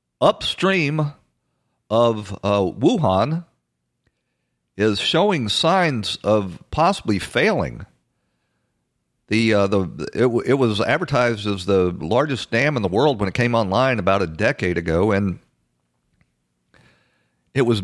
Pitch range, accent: 85-120 Hz, American